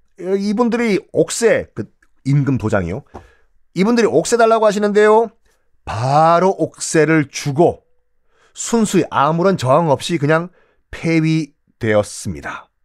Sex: male